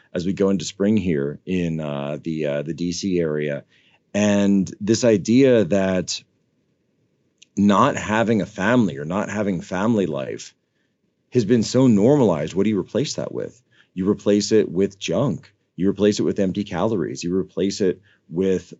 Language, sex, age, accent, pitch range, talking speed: English, male, 40-59, American, 85-100 Hz, 165 wpm